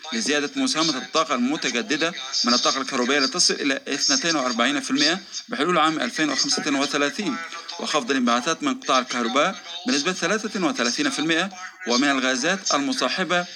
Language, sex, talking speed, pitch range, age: Arabic, male, 100 wpm, 145-235 Hz, 40-59